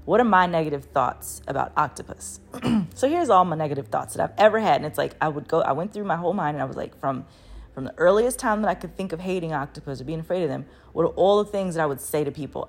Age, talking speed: 20-39, 290 wpm